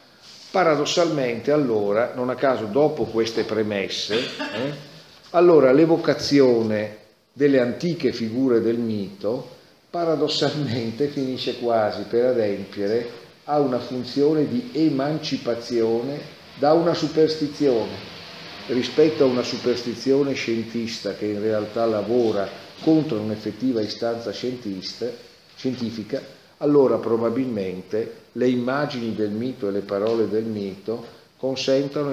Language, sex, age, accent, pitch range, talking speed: Italian, male, 50-69, native, 110-135 Hz, 100 wpm